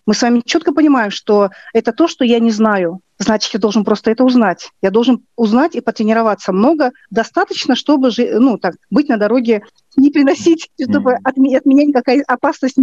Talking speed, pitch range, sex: 180 wpm, 210-260 Hz, female